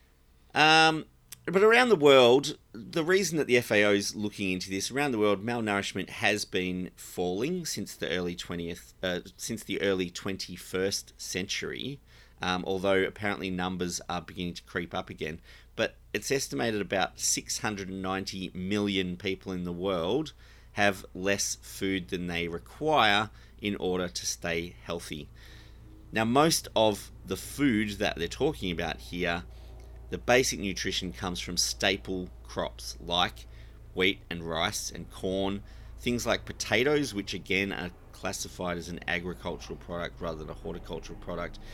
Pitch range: 85-110 Hz